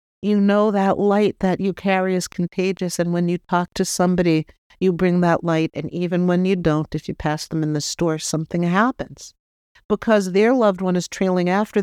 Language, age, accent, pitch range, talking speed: English, 50-69, American, 180-225 Hz, 205 wpm